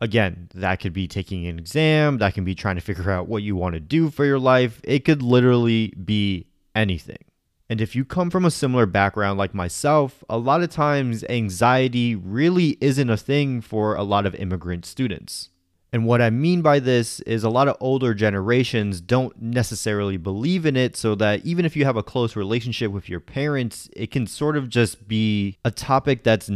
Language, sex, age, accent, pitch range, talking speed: English, male, 20-39, American, 100-130 Hz, 205 wpm